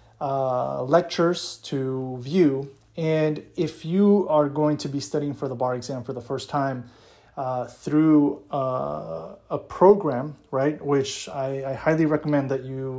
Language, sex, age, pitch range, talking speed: English, male, 30-49, 135-155 Hz, 150 wpm